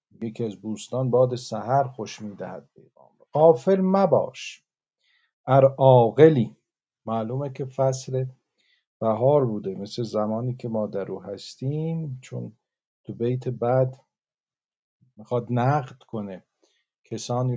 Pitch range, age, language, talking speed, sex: 110-140 Hz, 50-69, Persian, 100 wpm, male